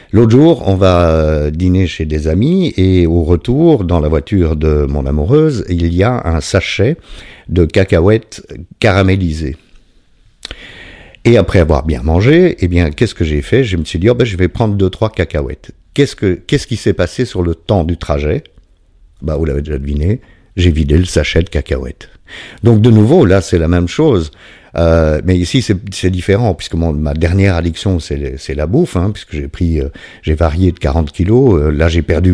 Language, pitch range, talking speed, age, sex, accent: French, 80-105 Hz, 200 wpm, 50-69, male, French